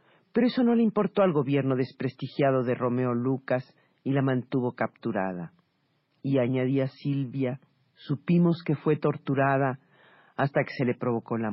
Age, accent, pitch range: 40-59, Mexican, 120-165 Hz